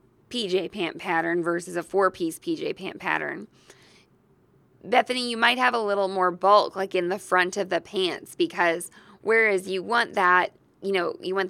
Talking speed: 170 wpm